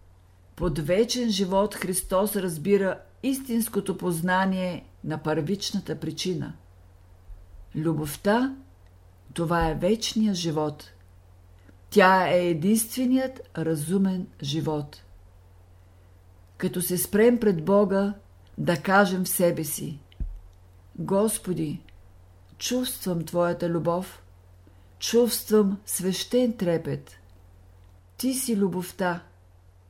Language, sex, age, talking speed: Bulgarian, female, 50-69, 80 wpm